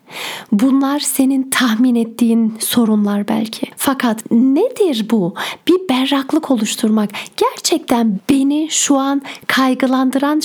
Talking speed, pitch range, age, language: 100 wpm, 235-285 Hz, 40-59, Turkish